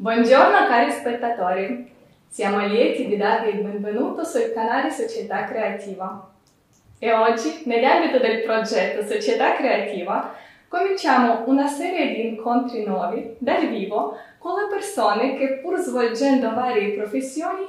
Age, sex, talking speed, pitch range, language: 20-39, female, 120 wpm, 215-285 Hz, Italian